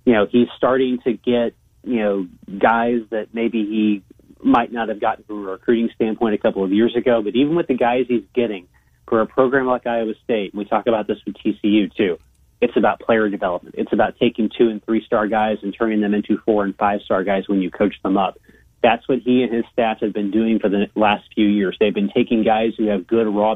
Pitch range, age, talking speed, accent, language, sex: 105-120 Hz, 30-49, 240 wpm, American, English, male